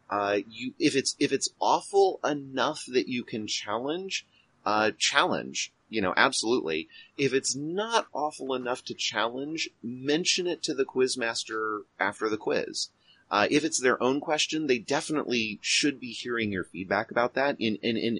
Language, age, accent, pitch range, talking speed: English, 30-49, American, 100-135 Hz, 170 wpm